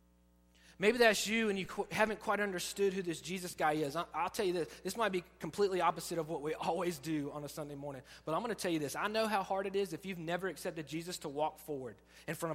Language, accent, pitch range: English, American, 155-215 Hz